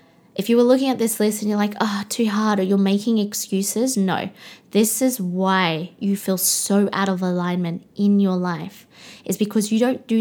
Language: English